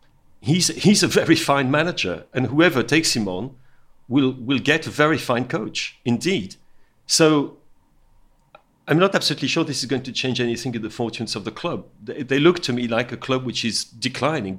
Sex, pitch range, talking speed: male, 110-135 Hz, 195 wpm